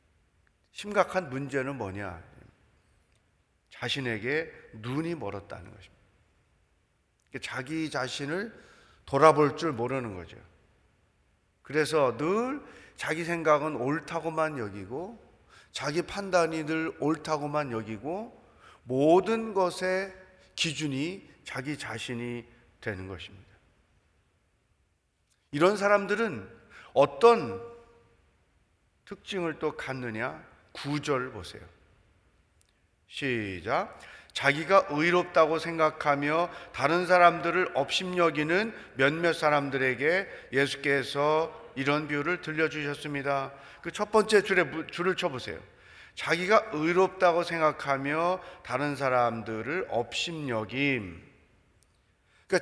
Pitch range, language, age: 105-170 Hz, Korean, 40-59